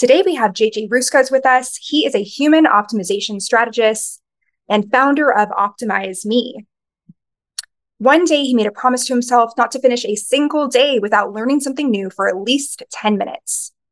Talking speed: 175 wpm